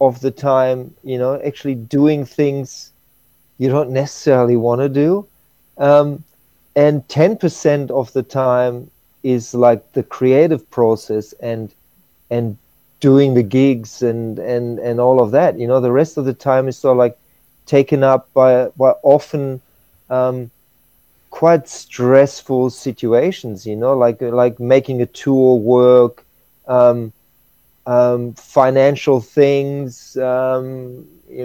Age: 40-59